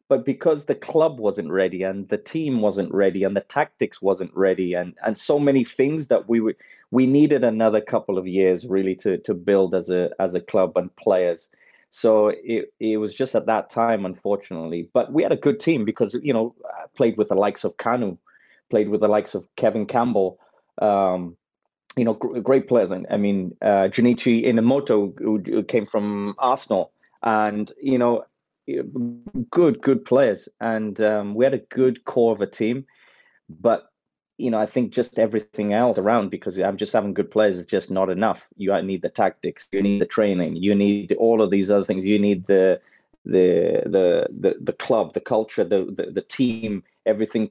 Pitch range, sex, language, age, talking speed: 100-120 Hz, male, English, 30-49, 190 wpm